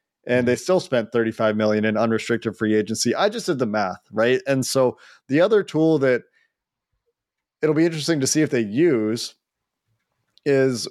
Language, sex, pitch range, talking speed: English, male, 120-145 Hz, 170 wpm